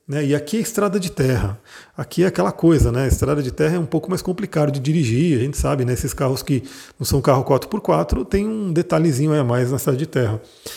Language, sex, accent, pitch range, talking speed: Portuguese, male, Brazilian, 140-180 Hz, 245 wpm